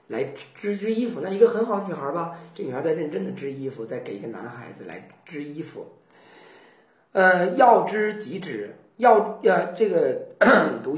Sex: male